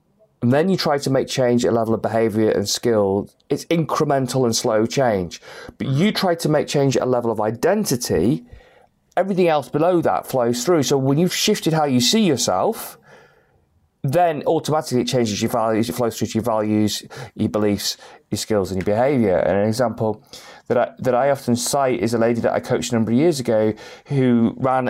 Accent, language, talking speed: British, English, 205 wpm